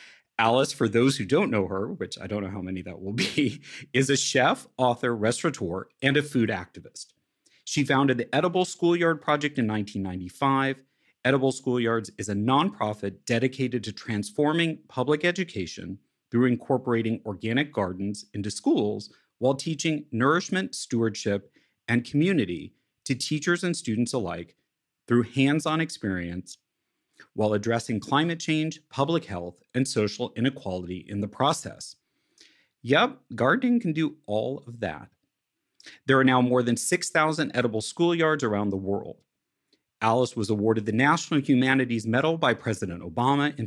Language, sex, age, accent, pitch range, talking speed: English, male, 40-59, American, 105-150 Hz, 145 wpm